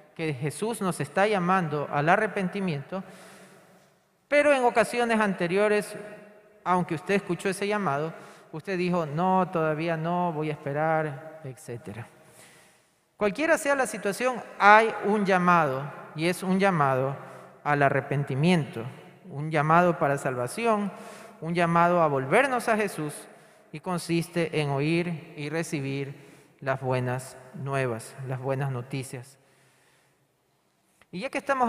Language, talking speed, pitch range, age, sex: Spanish, 120 wpm, 155-210 Hz, 40-59, male